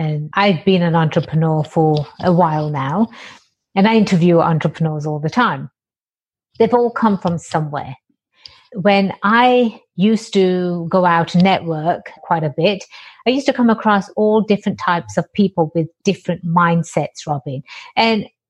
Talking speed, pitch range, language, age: 150 wpm, 170-220 Hz, English, 50-69